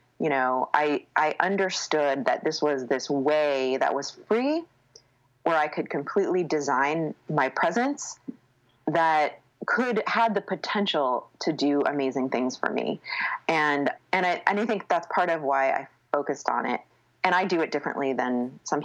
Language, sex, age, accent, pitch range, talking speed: English, female, 30-49, American, 135-180 Hz, 165 wpm